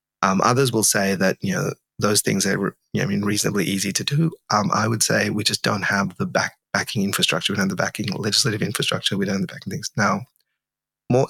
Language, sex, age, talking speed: English, male, 30-49, 240 wpm